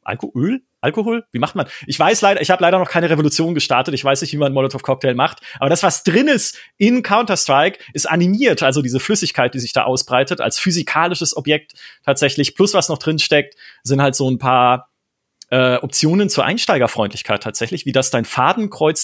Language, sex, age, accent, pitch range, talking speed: German, male, 30-49, German, 130-180 Hz, 200 wpm